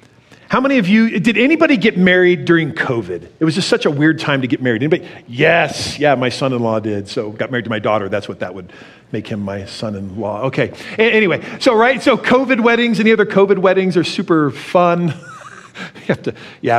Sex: male